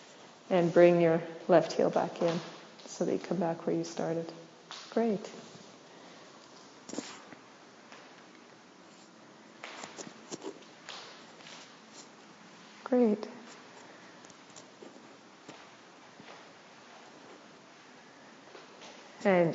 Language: English